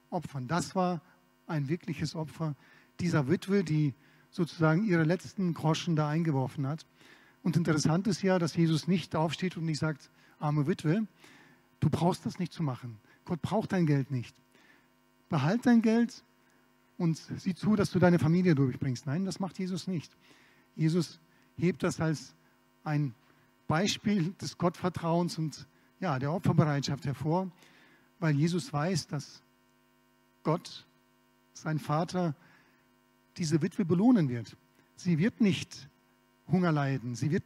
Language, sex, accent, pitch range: German, male, German, 140-180 Hz